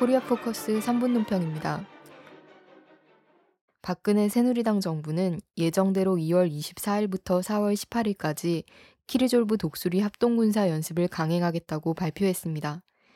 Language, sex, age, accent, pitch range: Korean, female, 20-39, native, 170-215 Hz